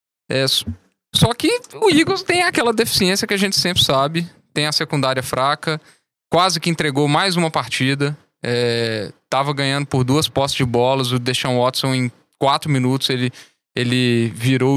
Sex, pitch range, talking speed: male, 130-160 Hz, 165 wpm